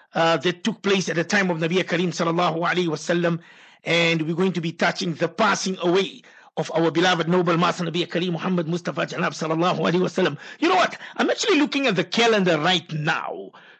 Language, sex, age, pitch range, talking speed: English, male, 50-69, 180-230 Hz, 200 wpm